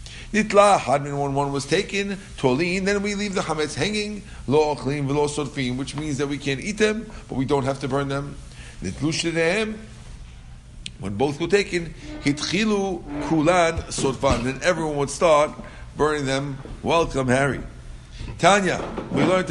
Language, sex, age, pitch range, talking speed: English, male, 50-69, 125-170 Hz, 155 wpm